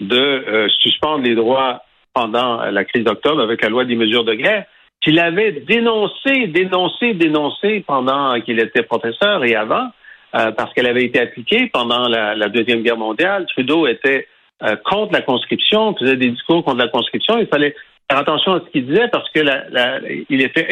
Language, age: French, 60-79